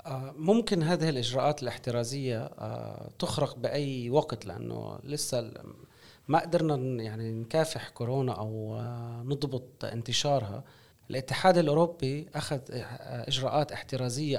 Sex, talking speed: male, 90 wpm